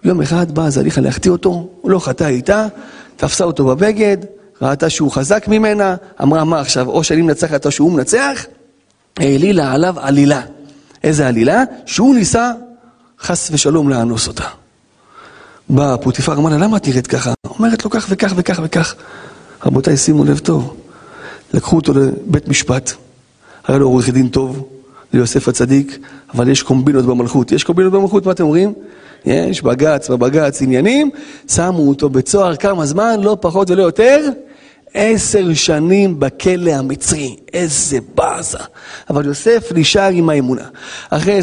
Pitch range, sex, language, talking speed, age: 145-225 Hz, male, Hebrew, 150 wpm, 30-49